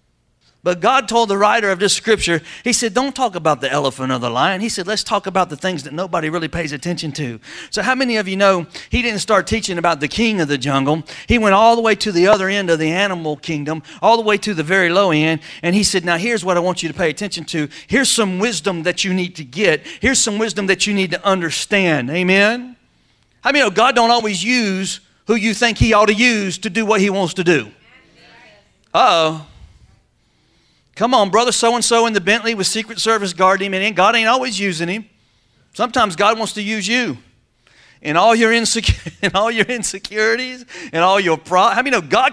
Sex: male